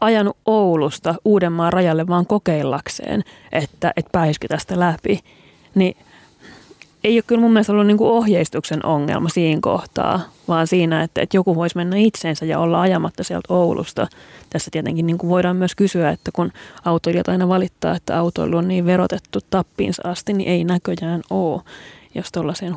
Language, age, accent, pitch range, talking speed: Finnish, 30-49, native, 165-190 Hz, 165 wpm